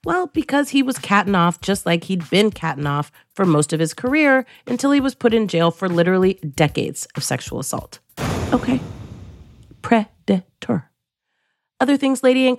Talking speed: 165 wpm